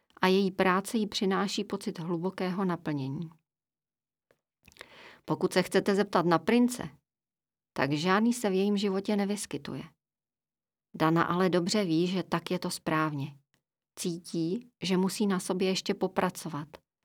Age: 40-59